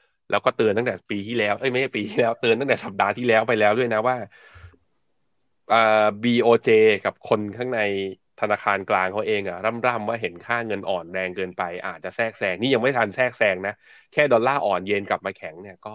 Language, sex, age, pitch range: Thai, male, 20-39, 95-115 Hz